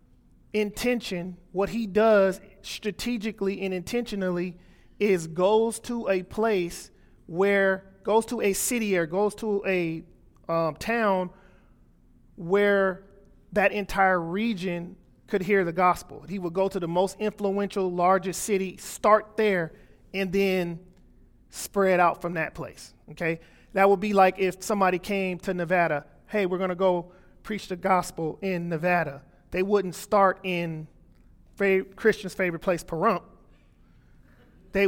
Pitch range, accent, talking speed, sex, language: 175-205 Hz, American, 130 wpm, male, English